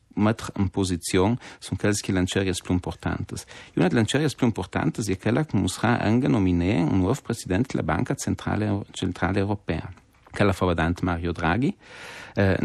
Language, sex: Italian, male